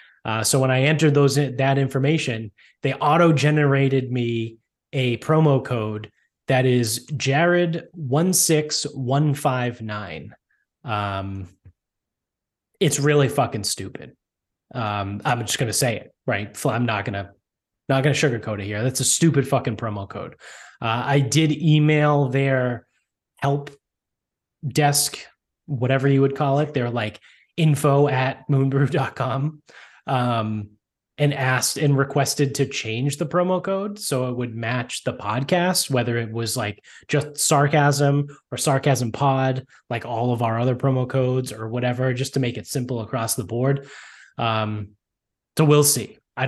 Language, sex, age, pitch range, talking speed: English, male, 20-39, 120-145 Hz, 145 wpm